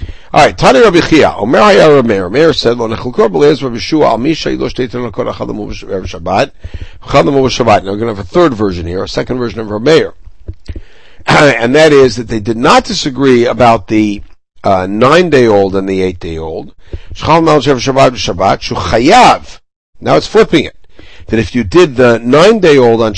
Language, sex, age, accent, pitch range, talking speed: English, male, 60-79, American, 100-150 Hz, 195 wpm